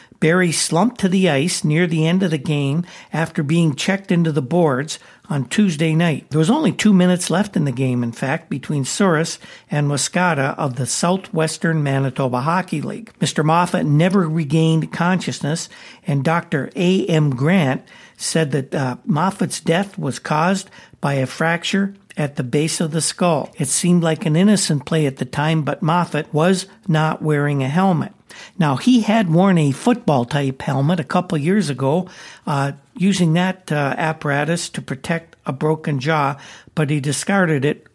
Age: 60-79